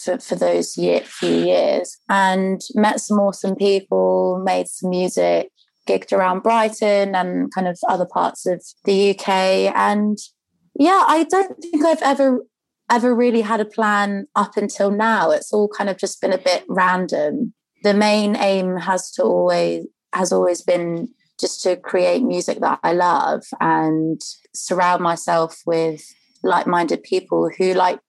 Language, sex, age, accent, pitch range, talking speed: English, female, 20-39, British, 165-210 Hz, 155 wpm